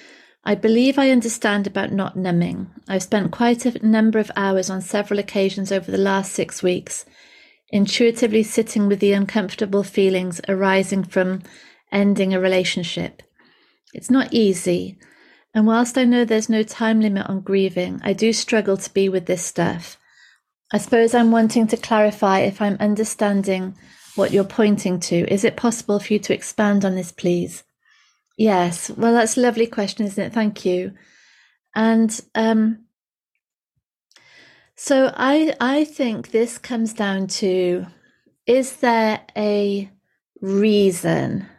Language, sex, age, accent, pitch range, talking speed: English, female, 30-49, British, 190-225 Hz, 145 wpm